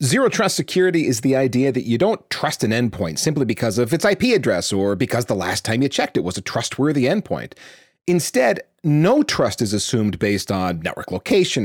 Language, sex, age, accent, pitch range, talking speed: English, male, 30-49, American, 105-145 Hz, 200 wpm